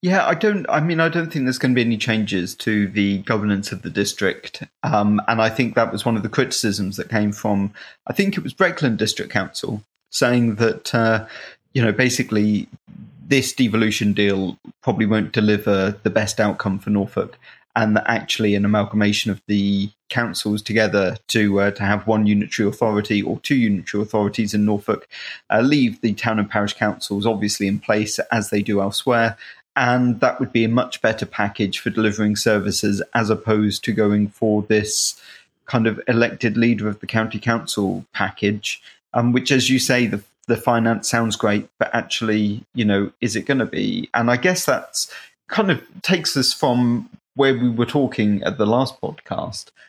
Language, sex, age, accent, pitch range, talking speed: English, male, 30-49, British, 105-125 Hz, 185 wpm